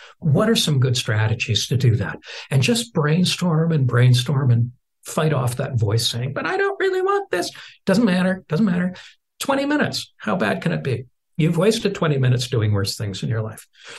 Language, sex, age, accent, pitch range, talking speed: English, male, 60-79, American, 120-165 Hz, 195 wpm